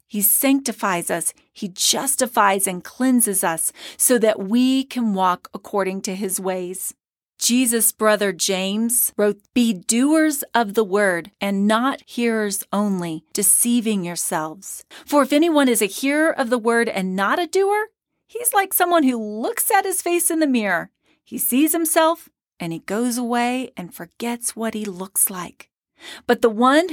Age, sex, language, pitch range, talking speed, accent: 40-59, female, English, 195-260 Hz, 160 wpm, American